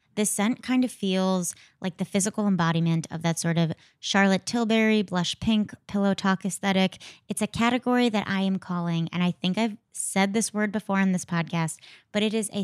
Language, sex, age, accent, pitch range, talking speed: English, female, 20-39, American, 170-210 Hz, 200 wpm